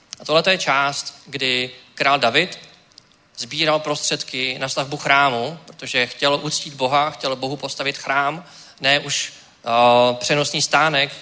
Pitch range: 130-150 Hz